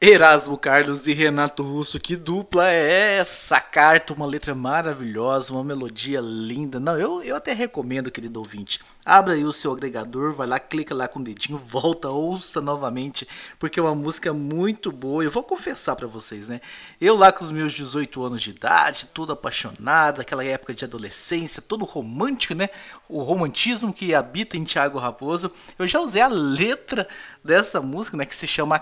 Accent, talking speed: Brazilian, 180 wpm